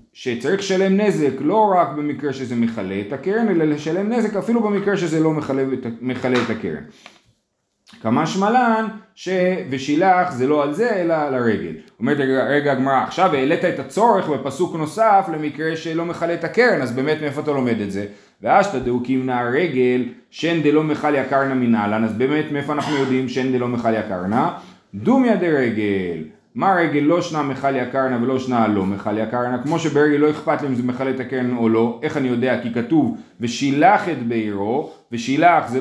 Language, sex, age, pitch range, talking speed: Hebrew, male, 30-49, 130-185 Hz, 170 wpm